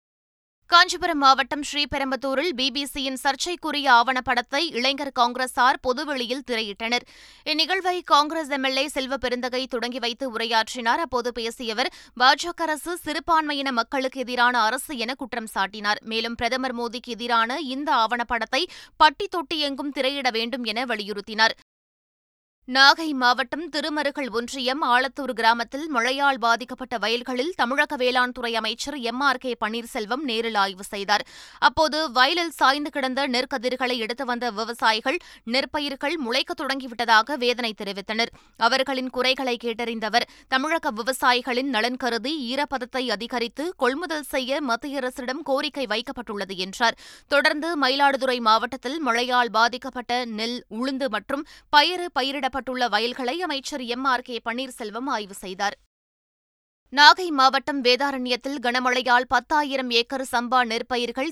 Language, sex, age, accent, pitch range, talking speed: Tamil, female, 20-39, native, 235-280 Hz, 110 wpm